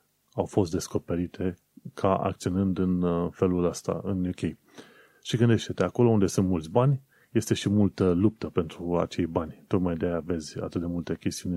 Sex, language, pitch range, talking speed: male, Romanian, 90-115 Hz, 165 wpm